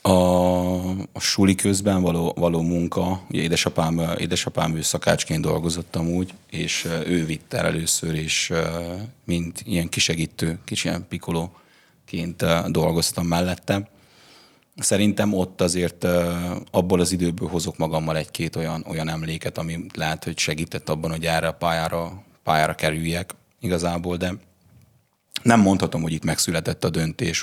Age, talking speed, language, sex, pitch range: 30-49, 125 wpm, Hungarian, male, 80-90 Hz